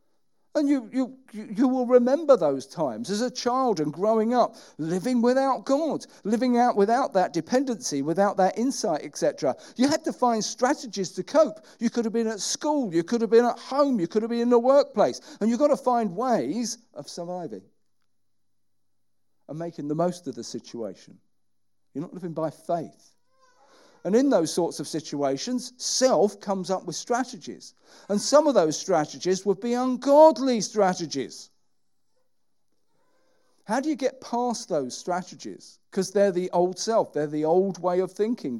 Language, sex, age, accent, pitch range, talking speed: English, male, 50-69, British, 170-255 Hz, 170 wpm